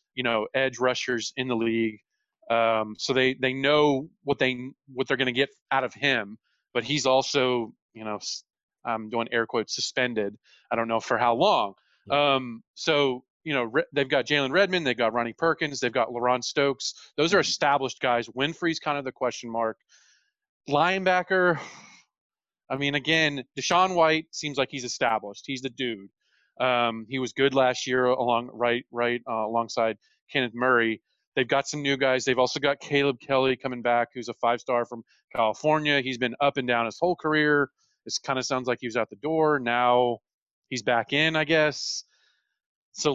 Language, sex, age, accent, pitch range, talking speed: English, male, 30-49, American, 120-145 Hz, 185 wpm